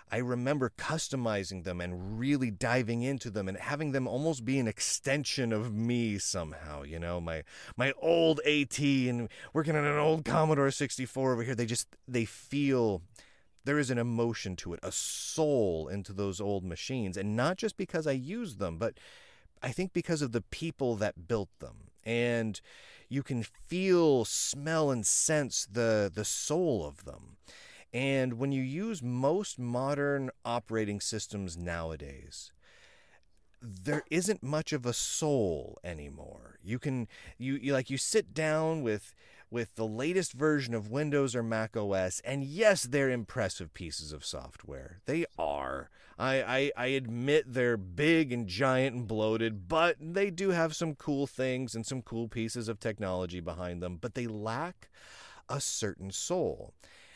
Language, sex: English, male